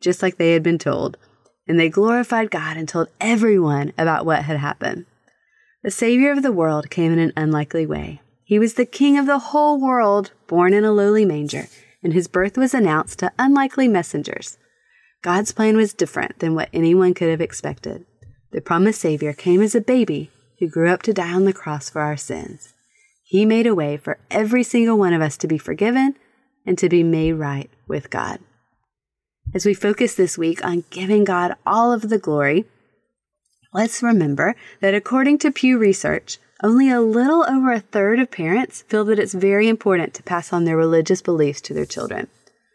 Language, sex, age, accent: English, female, 30-49, American